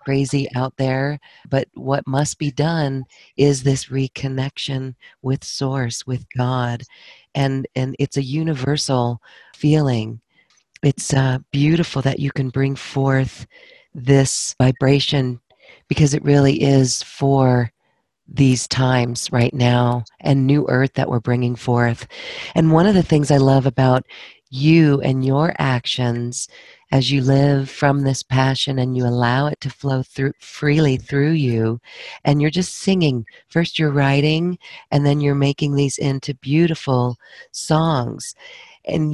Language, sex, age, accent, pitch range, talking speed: English, female, 40-59, American, 130-145 Hz, 140 wpm